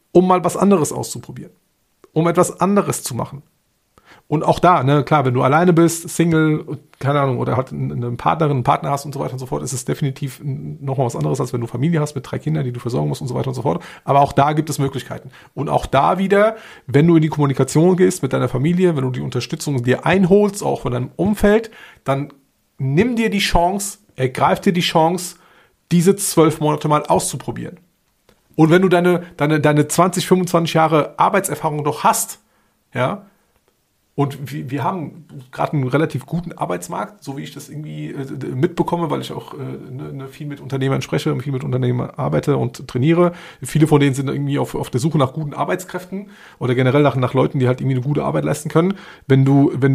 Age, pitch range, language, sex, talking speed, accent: 40-59, 135-170 Hz, German, male, 205 wpm, German